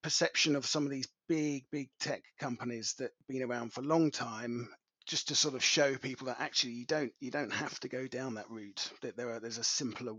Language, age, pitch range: English, 30-49, 125-140 Hz